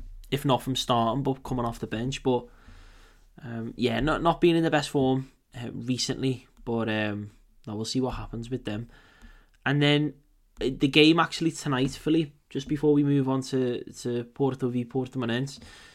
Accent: British